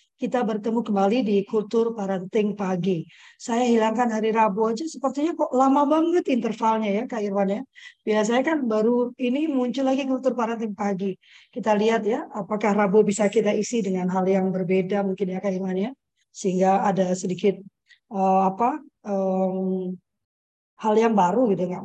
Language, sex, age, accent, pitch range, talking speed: Indonesian, female, 20-39, native, 190-235 Hz, 155 wpm